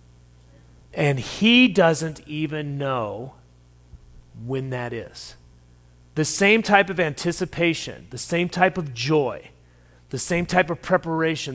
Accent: American